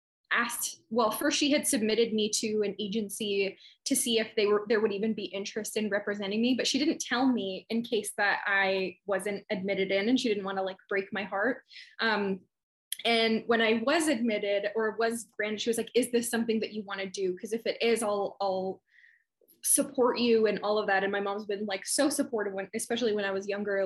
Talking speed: 220 wpm